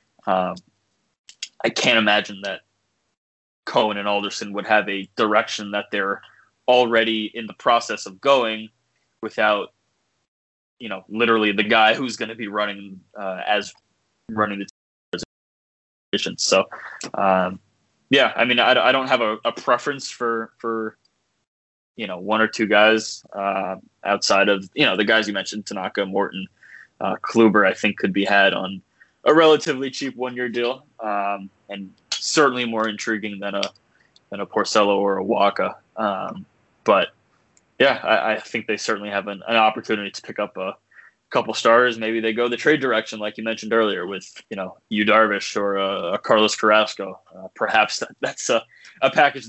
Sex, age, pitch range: male, 20-39, 100-115 Hz